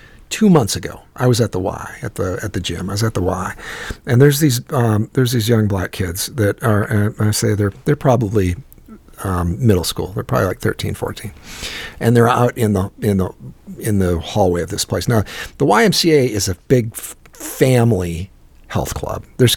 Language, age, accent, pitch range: English, 50-69, American, 95-125 Hz